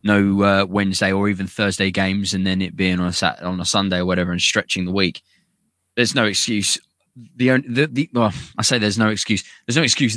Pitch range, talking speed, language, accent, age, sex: 100-115 Hz, 225 wpm, English, British, 20-39, male